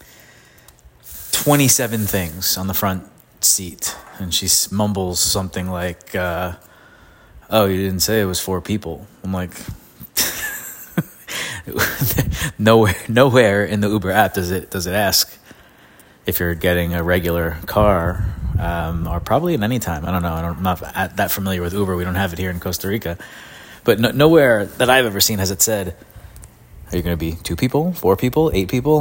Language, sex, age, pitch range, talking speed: English, male, 30-49, 85-105 Hz, 175 wpm